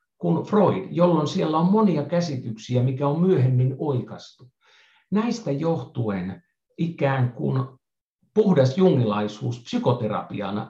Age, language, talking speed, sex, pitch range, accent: 50-69, Finnish, 100 wpm, male, 120-175 Hz, native